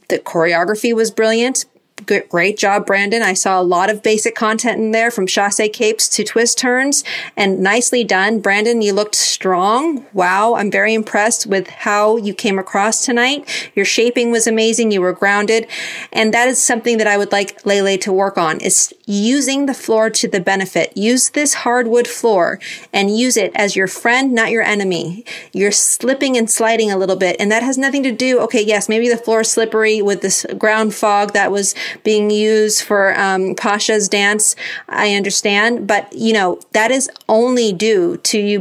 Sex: female